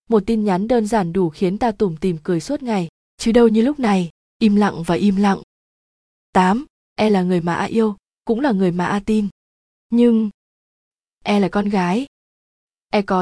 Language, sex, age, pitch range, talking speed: Vietnamese, female, 20-39, 185-230 Hz, 205 wpm